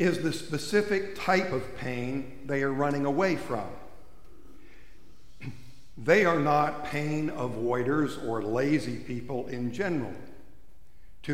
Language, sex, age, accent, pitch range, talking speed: English, male, 60-79, American, 125-155 Hz, 115 wpm